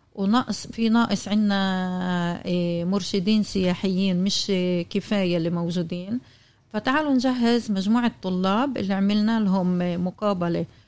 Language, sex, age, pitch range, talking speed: Arabic, female, 50-69, 180-205 Hz, 105 wpm